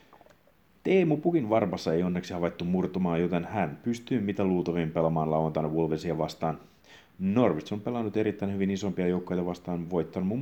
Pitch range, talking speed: 80-90 Hz, 150 wpm